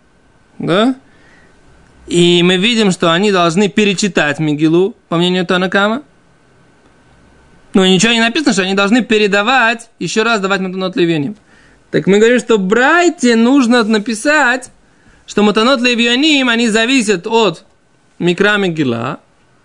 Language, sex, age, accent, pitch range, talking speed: Russian, male, 20-39, native, 185-240 Hz, 130 wpm